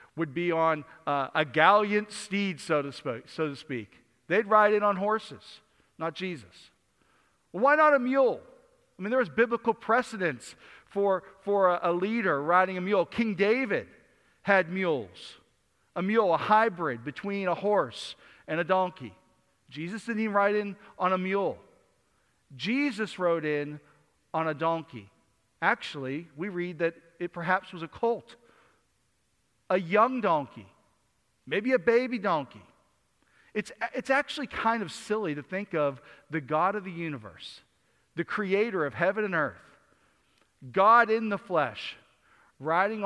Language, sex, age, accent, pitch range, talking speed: English, male, 50-69, American, 145-210 Hz, 150 wpm